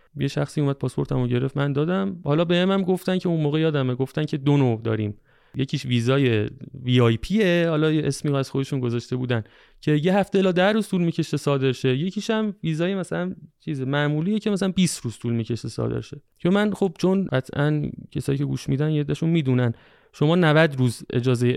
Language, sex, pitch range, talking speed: Persian, male, 130-180 Hz, 190 wpm